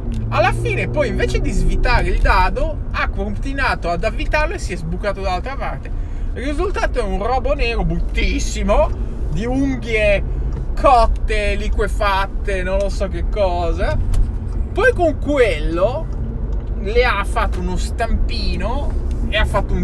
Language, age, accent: Italian, 20-39, native